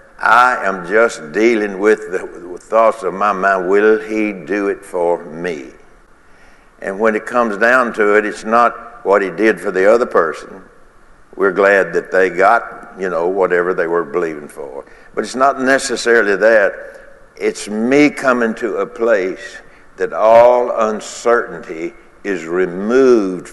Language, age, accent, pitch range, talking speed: English, 60-79, American, 100-135 Hz, 155 wpm